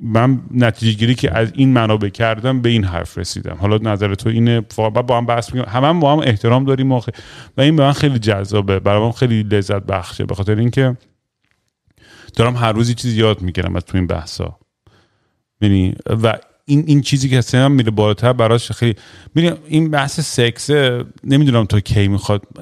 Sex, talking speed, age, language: male, 190 wpm, 40-59, Persian